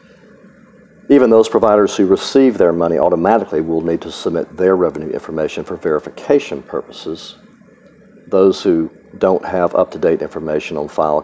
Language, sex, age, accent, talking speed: English, male, 50-69, American, 140 wpm